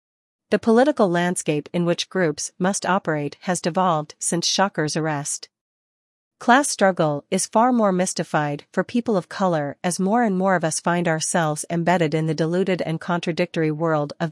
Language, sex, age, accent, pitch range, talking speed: English, female, 40-59, American, 160-195 Hz, 165 wpm